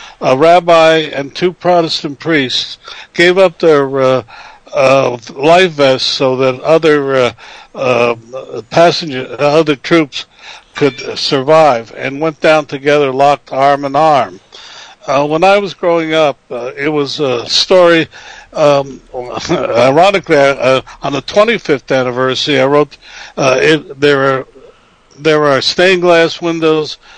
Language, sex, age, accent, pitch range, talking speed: English, male, 60-79, American, 130-165 Hz, 135 wpm